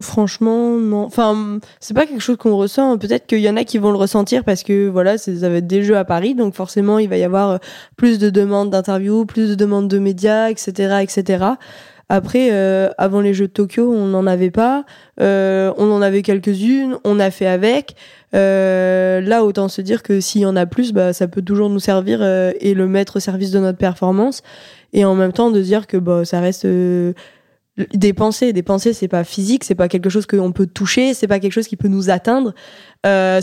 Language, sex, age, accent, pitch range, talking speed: French, female, 20-39, French, 190-215 Hz, 225 wpm